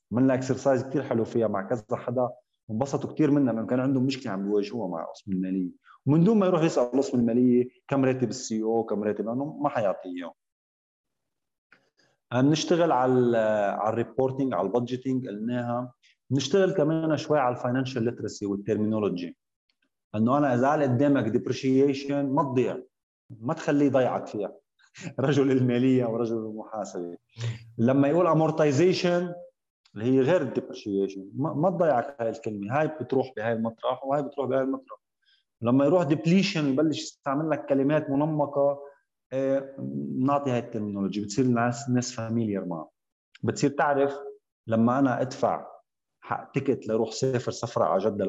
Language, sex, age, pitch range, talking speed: Arabic, male, 30-49, 110-140 Hz, 140 wpm